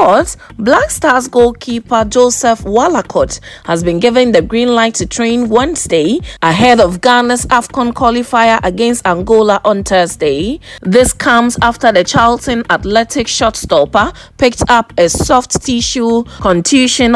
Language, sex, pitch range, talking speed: English, female, 200-245 Hz, 130 wpm